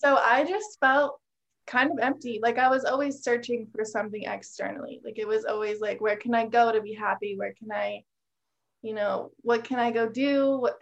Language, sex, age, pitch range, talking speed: English, female, 20-39, 210-255 Hz, 210 wpm